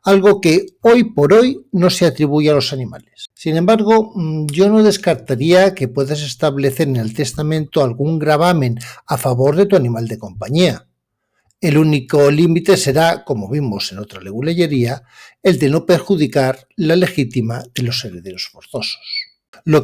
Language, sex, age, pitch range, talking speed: Spanish, male, 60-79, 130-185 Hz, 155 wpm